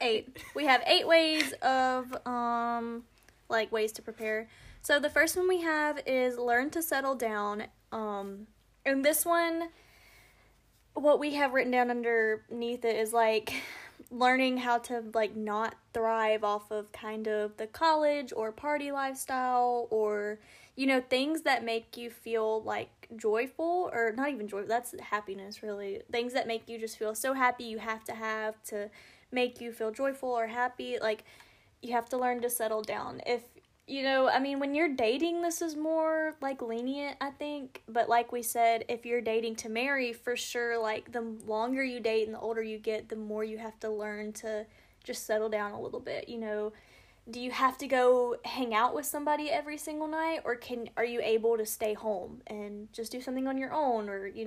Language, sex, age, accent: English, female, 10-29, American